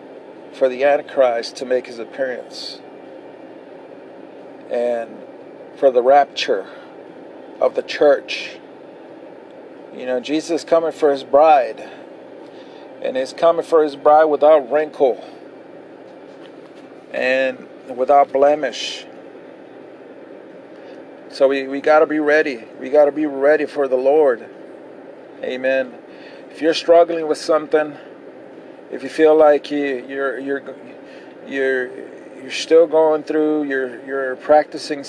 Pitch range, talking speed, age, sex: 135-155 Hz, 115 wpm, 40-59, male